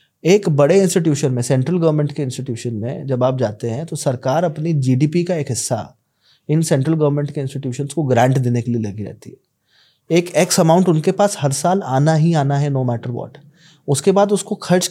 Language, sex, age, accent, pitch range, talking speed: Hindi, male, 20-39, native, 130-170 Hz, 205 wpm